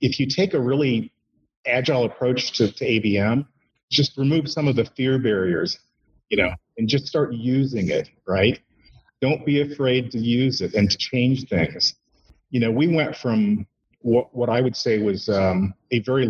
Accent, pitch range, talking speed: American, 110-135 Hz, 180 wpm